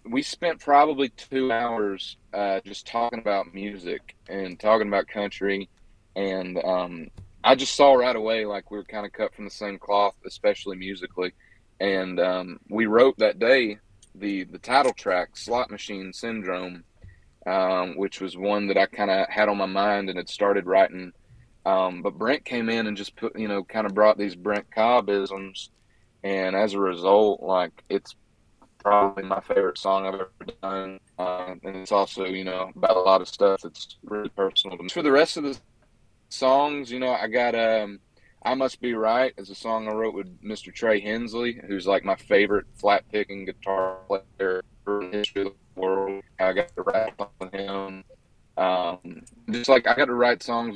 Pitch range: 95-110 Hz